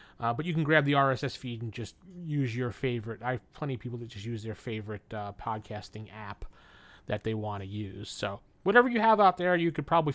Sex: male